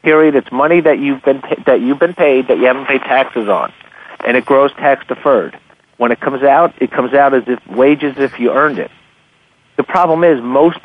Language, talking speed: English, 200 wpm